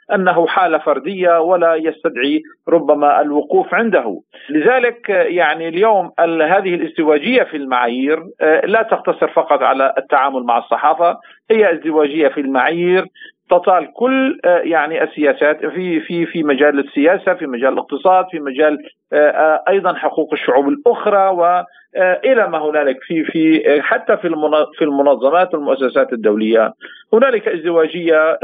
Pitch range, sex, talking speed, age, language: 150-185 Hz, male, 120 wpm, 50-69, Arabic